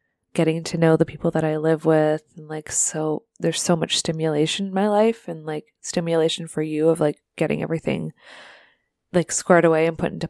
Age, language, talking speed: 20-39, English, 200 wpm